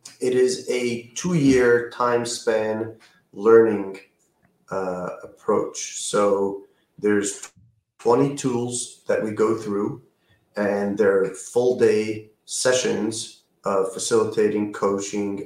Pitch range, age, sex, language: 100-120 Hz, 30-49, male, English